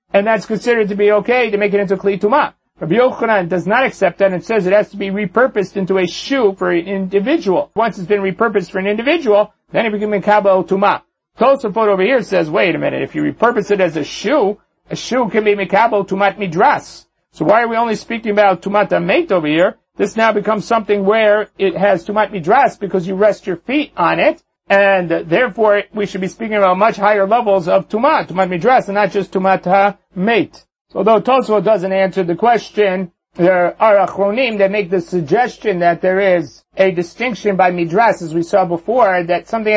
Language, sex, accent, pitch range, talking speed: English, male, American, 185-215 Hz, 205 wpm